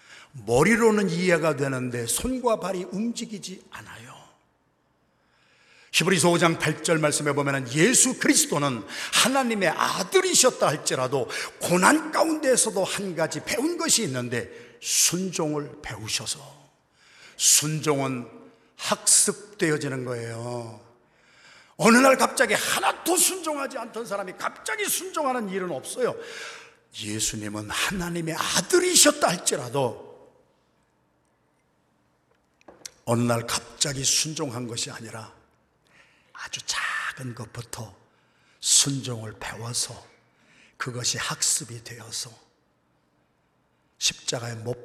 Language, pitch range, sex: Korean, 115-195 Hz, male